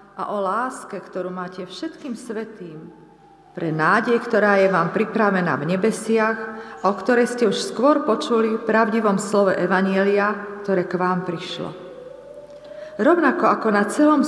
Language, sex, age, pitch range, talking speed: Slovak, female, 40-59, 190-230 Hz, 140 wpm